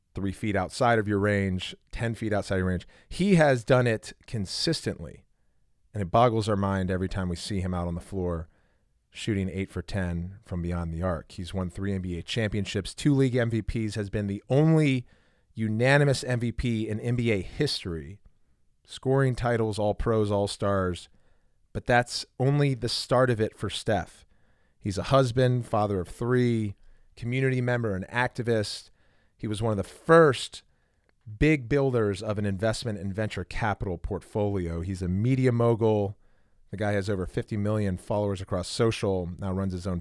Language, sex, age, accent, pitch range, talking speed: English, male, 30-49, American, 95-120 Hz, 170 wpm